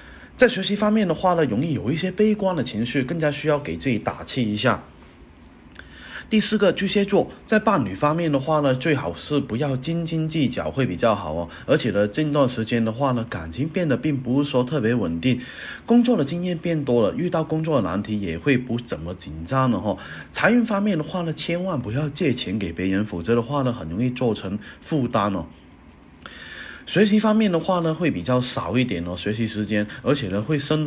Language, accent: Chinese, native